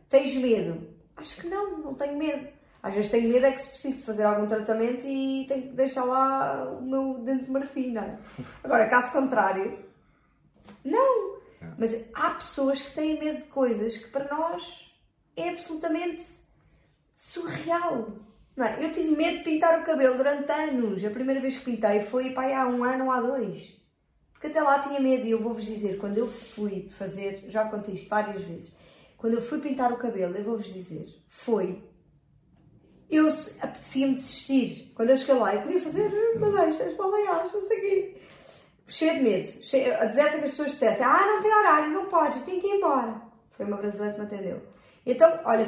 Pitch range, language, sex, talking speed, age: 220-305 Hz, Portuguese, female, 190 wpm, 20-39